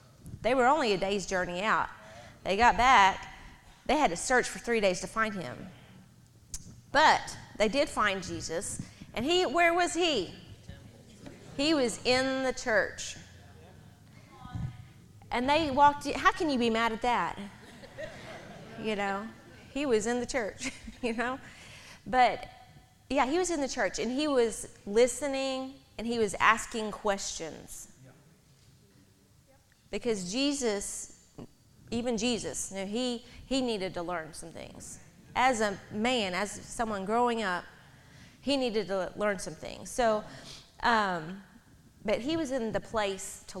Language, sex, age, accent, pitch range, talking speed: English, female, 30-49, American, 195-260 Hz, 145 wpm